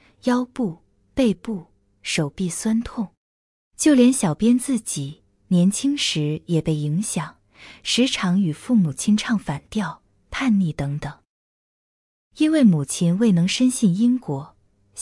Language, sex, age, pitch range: Chinese, female, 20-39, 155-230 Hz